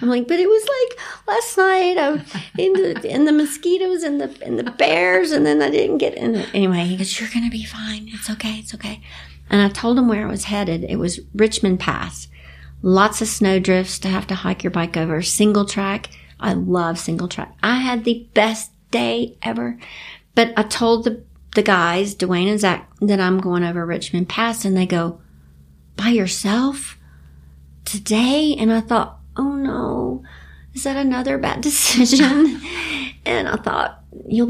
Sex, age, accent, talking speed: female, 50-69, American, 185 wpm